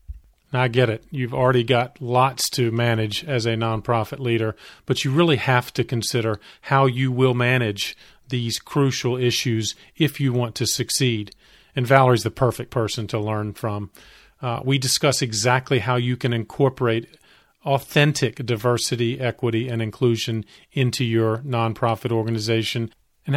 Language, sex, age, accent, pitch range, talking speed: English, male, 40-59, American, 120-145 Hz, 145 wpm